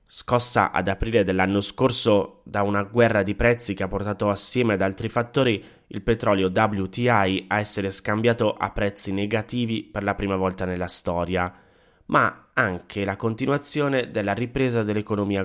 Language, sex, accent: Italian, male, native